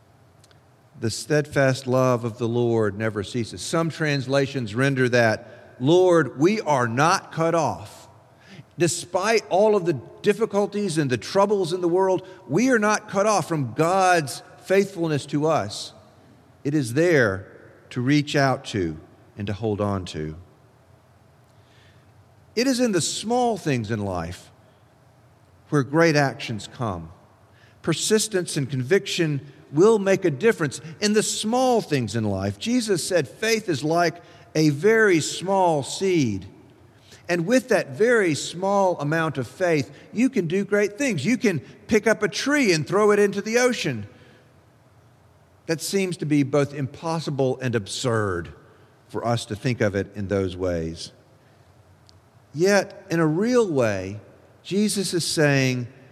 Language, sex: English, male